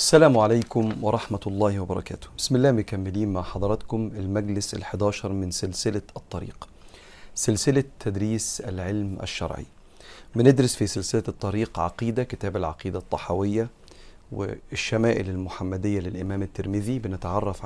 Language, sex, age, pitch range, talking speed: Arabic, male, 40-59, 95-115 Hz, 110 wpm